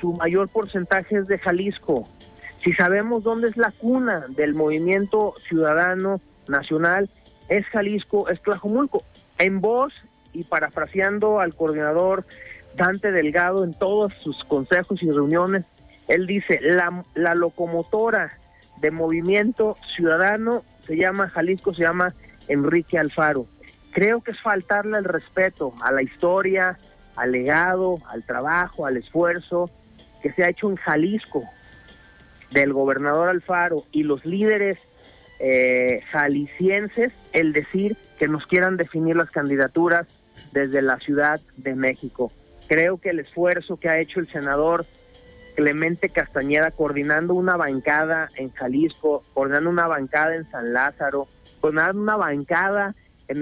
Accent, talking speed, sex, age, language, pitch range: Mexican, 130 wpm, male, 40-59, Spanish, 150-190 Hz